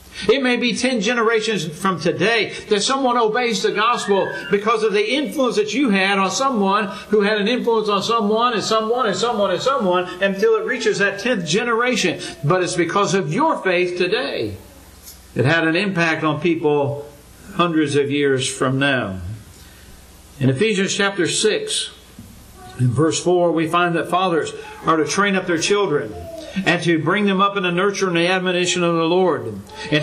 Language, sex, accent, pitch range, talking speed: English, male, American, 165-225 Hz, 180 wpm